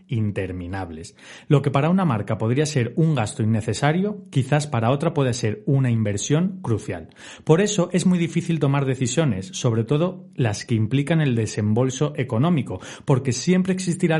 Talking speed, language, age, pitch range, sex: 155 wpm, Spanish, 30-49, 110-155 Hz, male